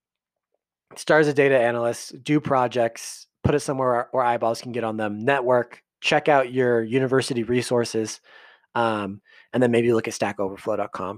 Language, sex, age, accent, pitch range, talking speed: English, male, 30-49, American, 115-140 Hz, 160 wpm